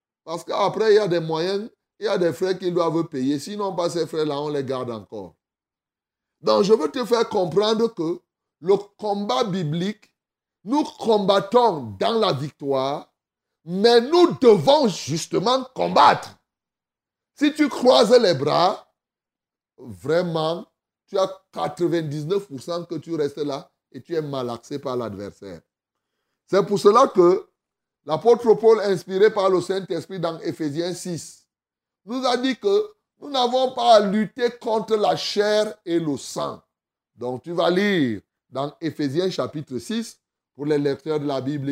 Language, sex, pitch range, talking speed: French, male, 155-225 Hz, 150 wpm